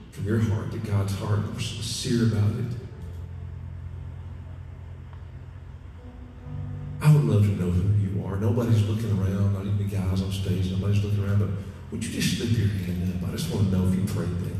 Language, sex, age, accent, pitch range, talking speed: English, male, 40-59, American, 95-110 Hz, 195 wpm